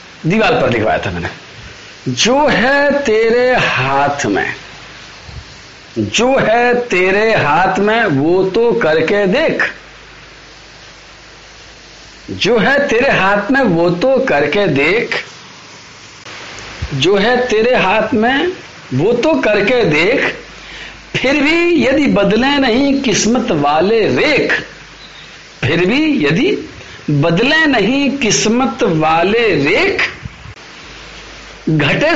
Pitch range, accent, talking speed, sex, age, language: 165-265 Hz, native, 100 wpm, male, 50-69, Hindi